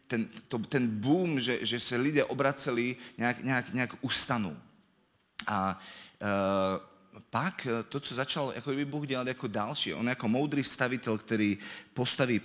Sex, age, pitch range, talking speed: male, 30-49, 100-125 Hz, 140 wpm